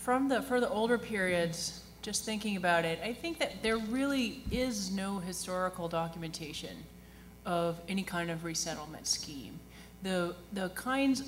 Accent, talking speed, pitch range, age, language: American, 150 wpm, 160-210 Hz, 30-49, English